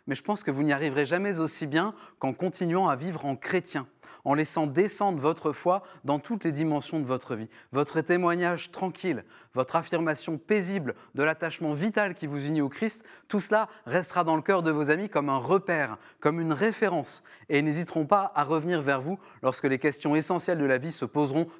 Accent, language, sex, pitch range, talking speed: French, French, male, 140-180 Hz, 205 wpm